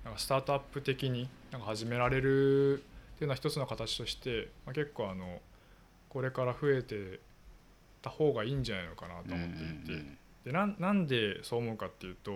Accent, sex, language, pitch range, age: native, male, Japanese, 100-150 Hz, 20-39